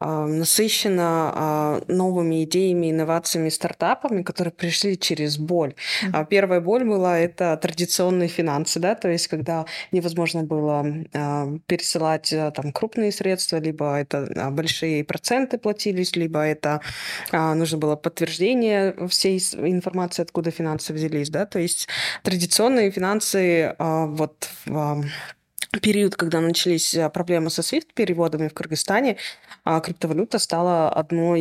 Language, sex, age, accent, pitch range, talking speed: Russian, female, 20-39, native, 160-190 Hz, 110 wpm